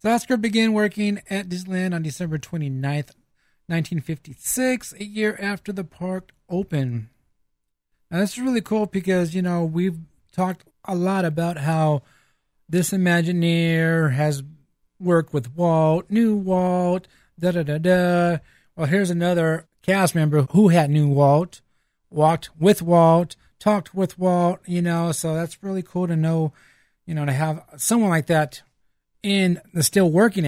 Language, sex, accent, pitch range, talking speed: English, male, American, 145-185 Hz, 140 wpm